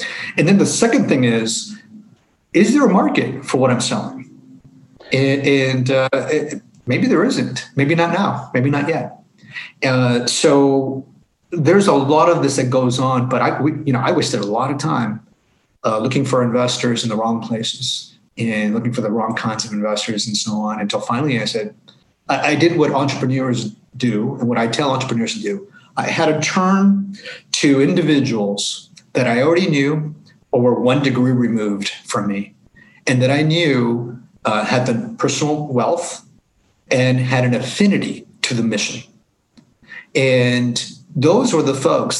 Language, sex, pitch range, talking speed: English, male, 120-155 Hz, 170 wpm